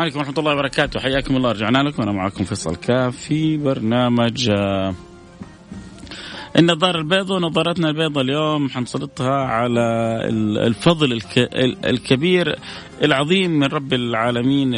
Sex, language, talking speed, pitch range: male, Arabic, 115 wpm, 120-160 Hz